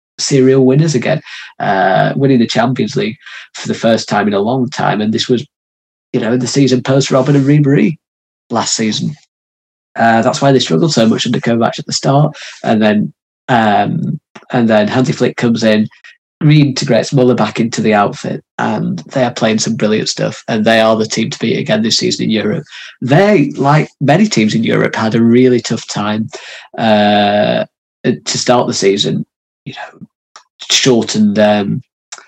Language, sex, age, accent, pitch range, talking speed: English, male, 20-39, British, 110-125 Hz, 180 wpm